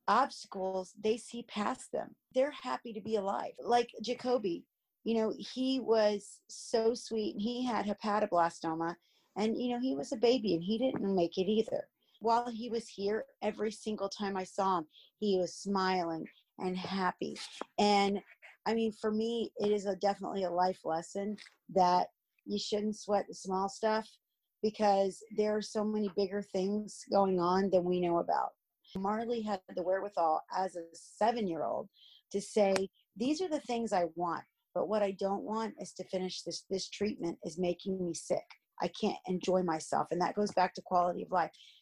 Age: 40-59